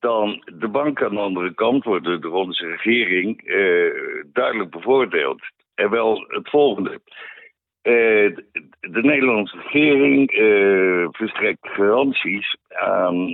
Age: 60-79